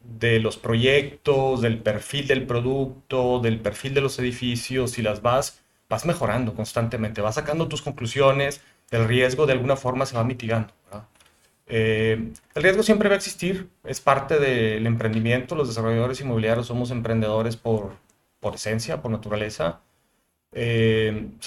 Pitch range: 110-135 Hz